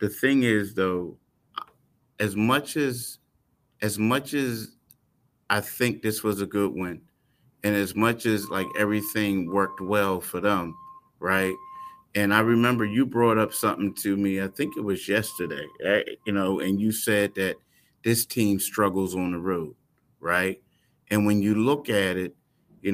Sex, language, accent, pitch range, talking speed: male, English, American, 95-115 Hz, 165 wpm